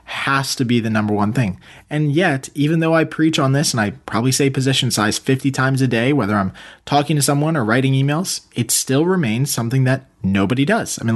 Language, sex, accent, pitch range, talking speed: English, male, American, 120-155 Hz, 225 wpm